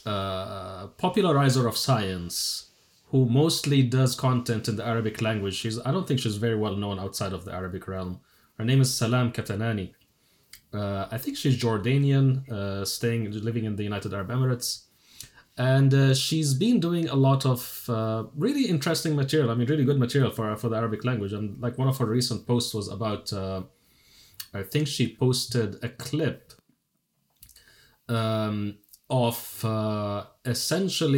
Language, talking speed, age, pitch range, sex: English, 165 wpm, 30-49, 105-130 Hz, male